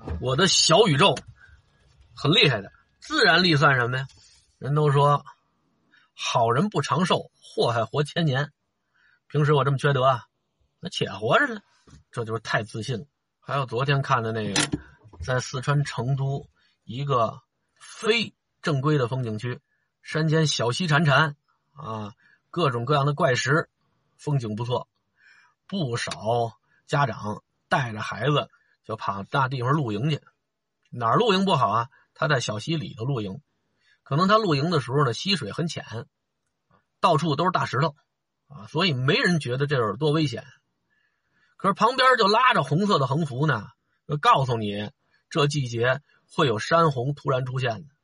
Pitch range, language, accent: 120-160 Hz, Chinese, native